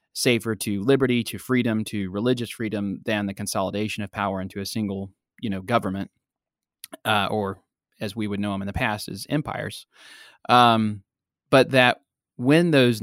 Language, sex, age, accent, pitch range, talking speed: English, male, 30-49, American, 100-120 Hz, 165 wpm